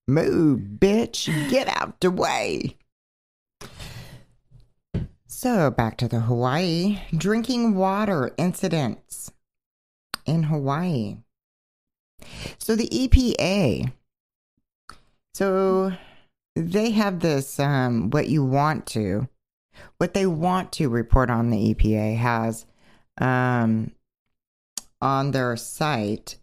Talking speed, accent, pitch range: 95 wpm, American, 115-180 Hz